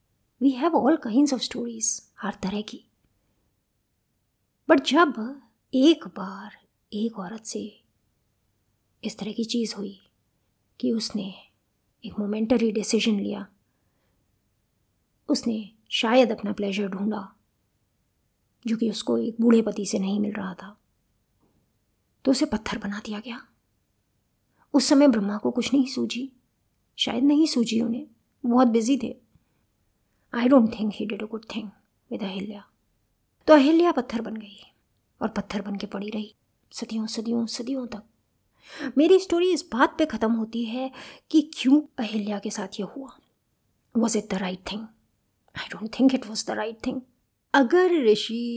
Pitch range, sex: 210-265 Hz, female